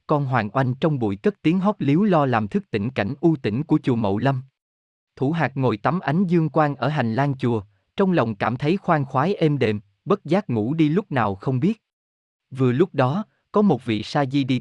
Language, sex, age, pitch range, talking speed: Vietnamese, male, 20-39, 115-160 Hz, 230 wpm